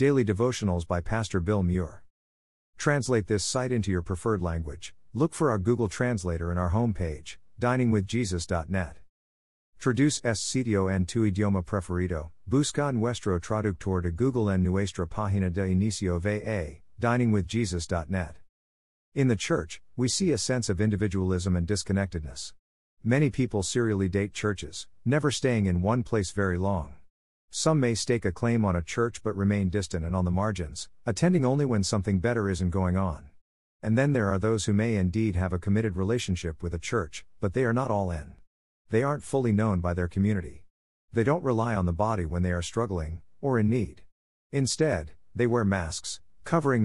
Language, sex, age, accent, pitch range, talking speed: English, male, 50-69, American, 90-115 Hz, 170 wpm